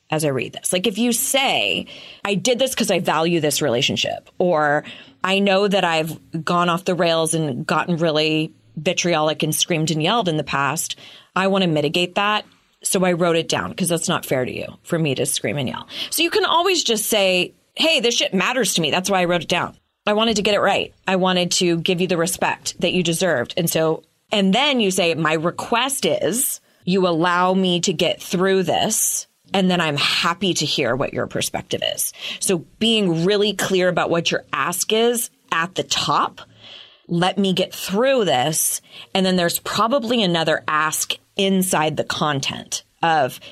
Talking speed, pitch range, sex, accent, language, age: 200 wpm, 155-190 Hz, female, American, English, 30-49